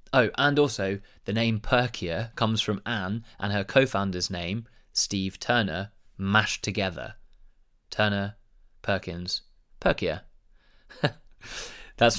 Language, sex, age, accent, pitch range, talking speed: English, male, 20-39, British, 100-120 Hz, 105 wpm